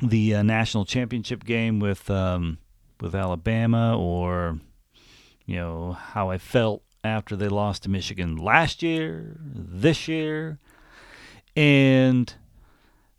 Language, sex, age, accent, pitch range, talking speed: English, male, 40-59, American, 95-135 Hz, 115 wpm